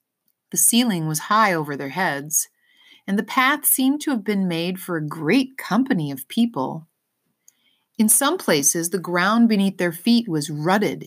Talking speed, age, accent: 170 wpm, 30-49, American